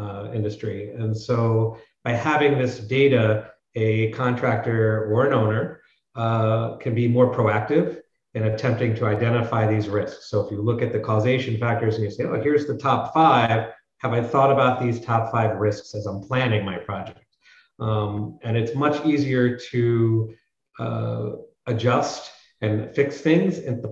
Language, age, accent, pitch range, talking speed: English, 40-59, American, 105-120 Hz, 165 wpm